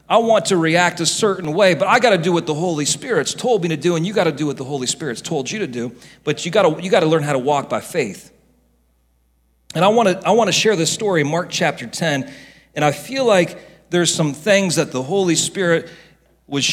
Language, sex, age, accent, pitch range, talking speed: English, male, 40-59, American, 145-190 Hz, 240 wpm